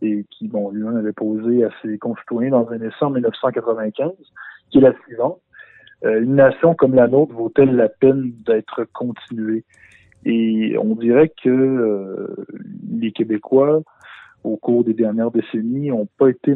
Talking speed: 160 wpm